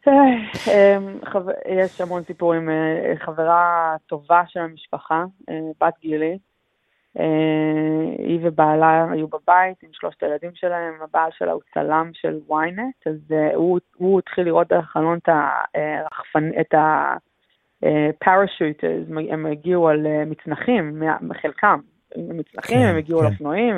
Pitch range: 155-190 Hz